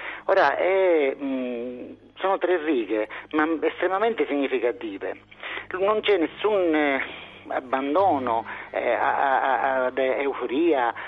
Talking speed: 70 wpm